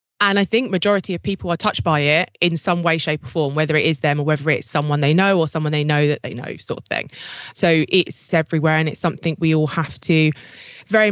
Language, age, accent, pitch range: English, 20-39, British, 155-195 Hz